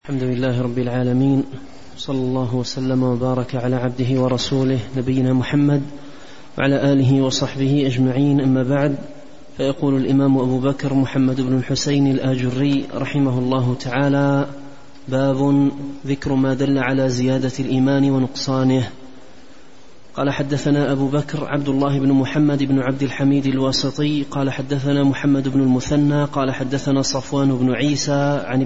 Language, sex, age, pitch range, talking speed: Arabic, male, 30-49, 135-145 Hz, 130 wpm